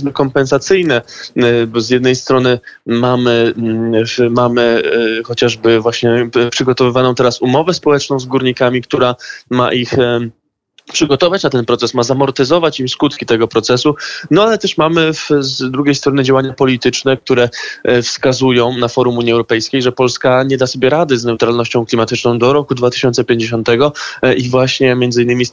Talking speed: 145 wpm